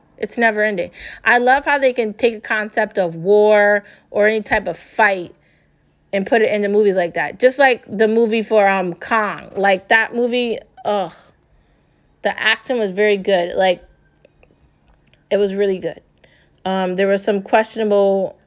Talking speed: 165 wpm